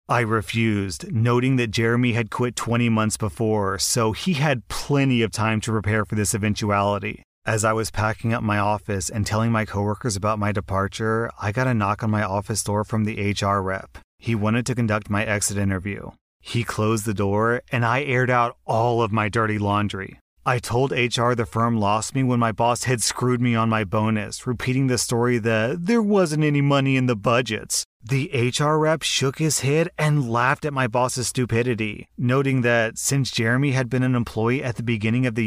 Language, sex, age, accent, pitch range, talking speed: English, male, 30-49, American, 110-130 Hz, 200 wpm